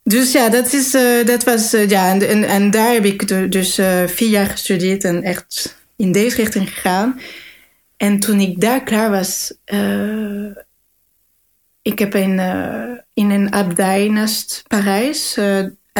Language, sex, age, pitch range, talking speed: Dutch, female, 30-49, 195-225 Hz, 160 wpm